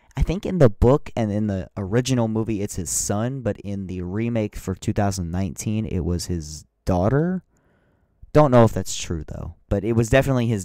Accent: American